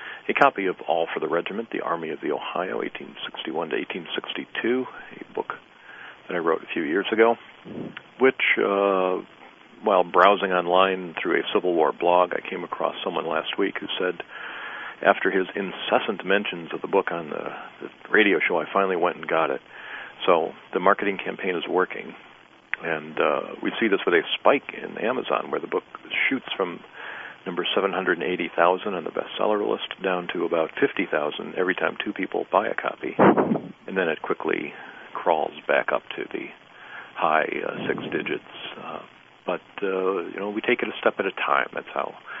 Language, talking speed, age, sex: English, 180 wpm, 50-69, male